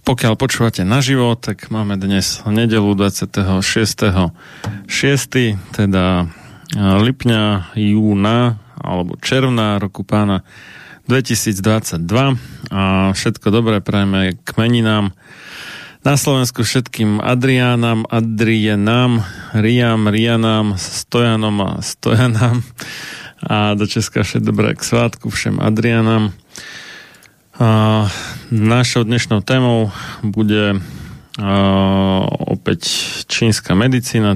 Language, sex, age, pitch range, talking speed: Slovak, male, 30-49, 100-120 Hz, 80 wpm